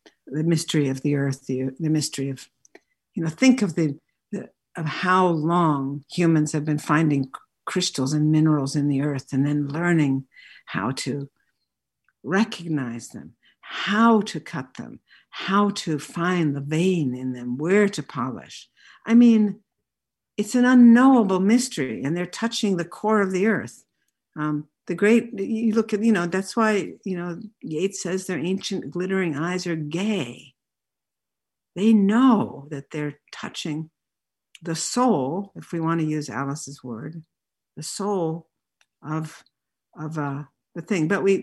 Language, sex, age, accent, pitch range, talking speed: English, female, 60-79, American, 150-205 Hz, 150 wpm